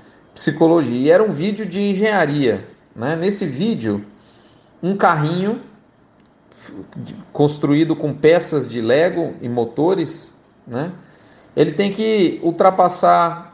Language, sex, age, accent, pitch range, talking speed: Portuguese, male, 40-59, Brazilian, 140-180 Hz, 105 wpm